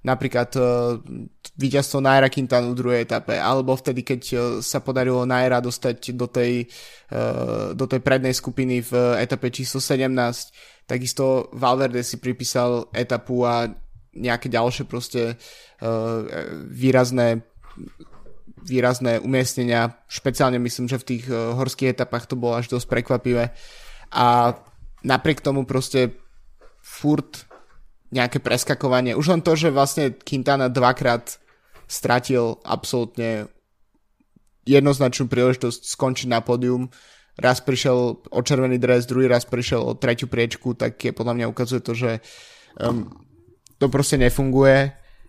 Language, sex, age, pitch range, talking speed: Slovak, male, 20-39, 120-130 Hz, 125 wpm